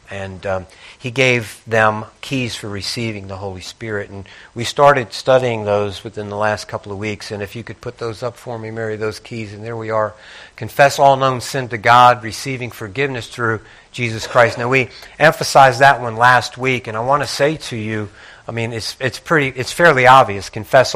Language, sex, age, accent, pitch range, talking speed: English, male, 50-69, American, 110-135 Hz, 205 wpm